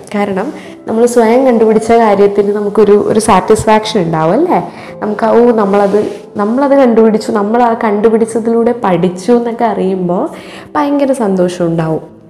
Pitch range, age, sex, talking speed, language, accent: 180-245 Hz, 20-39, female, 105 wpm, Malayalam, native